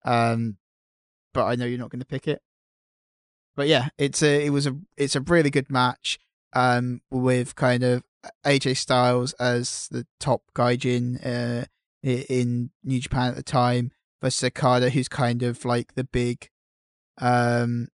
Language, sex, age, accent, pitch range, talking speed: English, male, 10-29, British, 120-135 Hz, 165 wpm